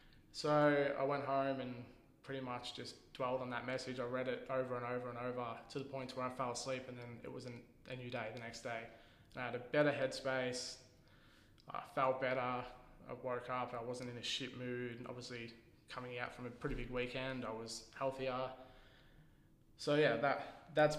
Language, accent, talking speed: English, Australian, 205 wpm